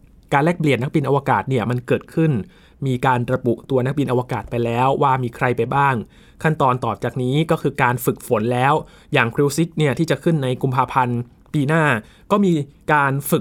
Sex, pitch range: male, 120-150 Hz